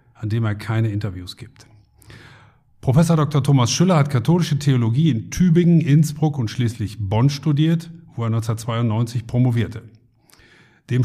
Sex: male